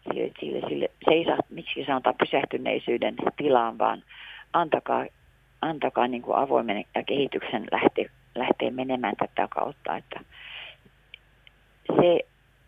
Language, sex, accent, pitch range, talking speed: Finnish, female, native, 150-180 Hz, 115 wpm